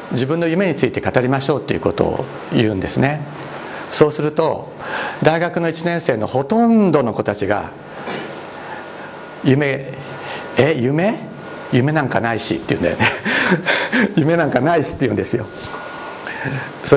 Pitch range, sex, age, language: 130-200 Hz, male, 60-79, Japanese